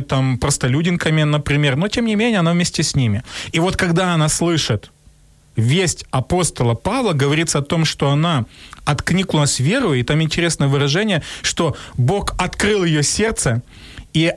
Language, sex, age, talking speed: Ukrainian, male, 30-49, 150 wpm